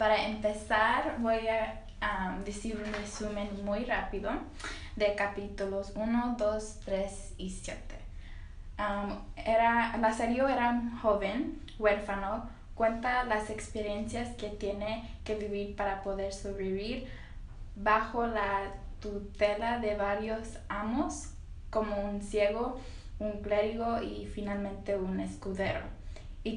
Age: 10-29